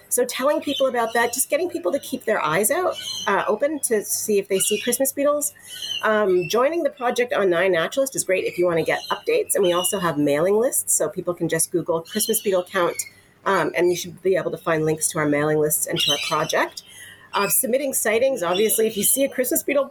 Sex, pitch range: female, 175-260 Hz